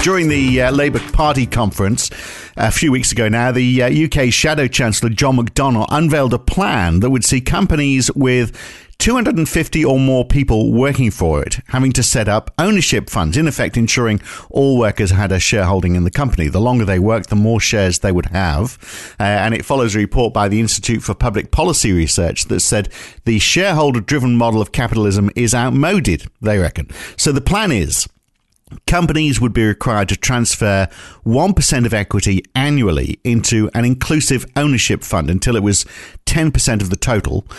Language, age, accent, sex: English, 50-69, British, male